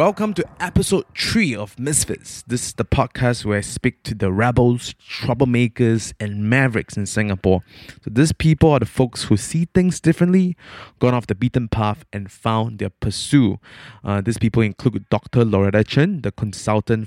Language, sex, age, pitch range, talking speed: English, male, 20-39, 105-130 Hz, 170 wpm